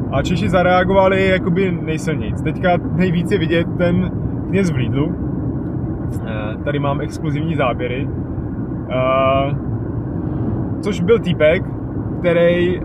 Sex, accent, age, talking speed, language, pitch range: male, native, 20-39, 100 wpm, Czech, 140-170 Hz